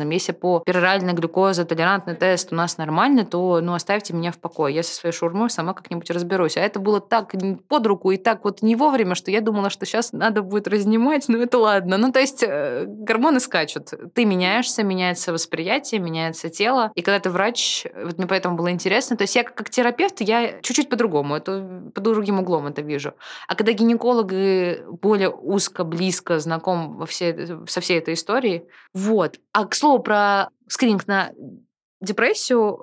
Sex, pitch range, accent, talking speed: female, 175-225 Hz, native, 180 wpm